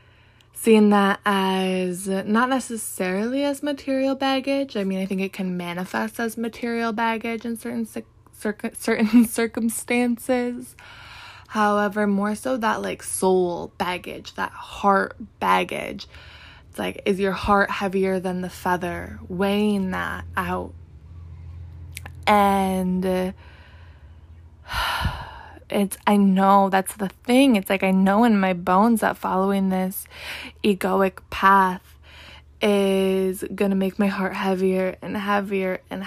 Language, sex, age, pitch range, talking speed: English, female, 20-39, 185-210 Hz, 125 wpm